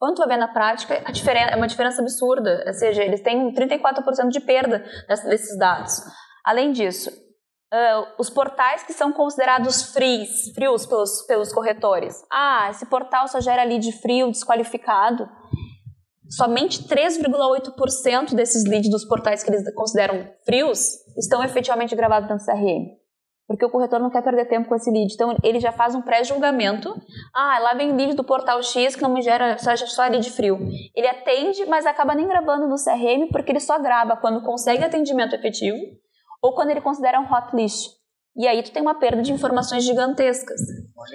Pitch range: 225-270 Hz